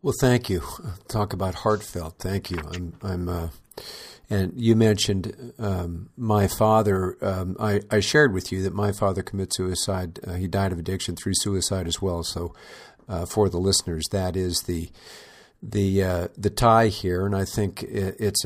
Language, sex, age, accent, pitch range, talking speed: English, male, 50-69, American, 95-110 Hz, 175 wpm